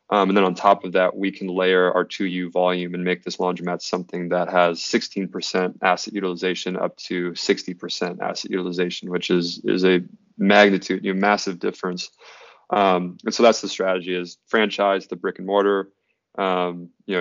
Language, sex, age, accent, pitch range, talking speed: English, male, 20-39, American, 90-100 Hz, 185 wpm